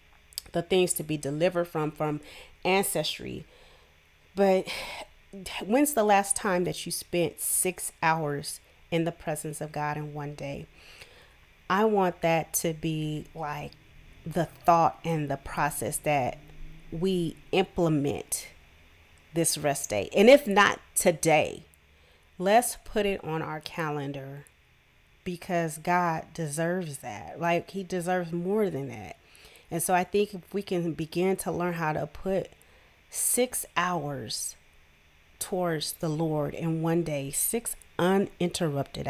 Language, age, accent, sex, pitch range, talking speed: English, 30-49, American, female, 140-180 Hz, 130 wpm